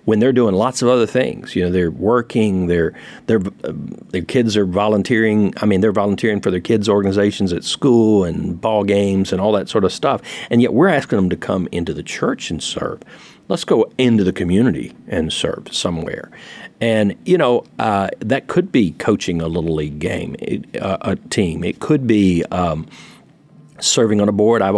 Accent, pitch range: American, 90-115 Hz